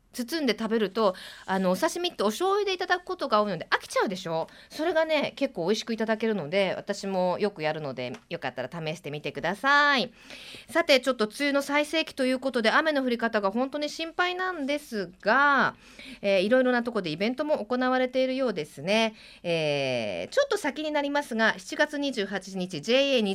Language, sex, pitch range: Japanese, female, 195-295 Hz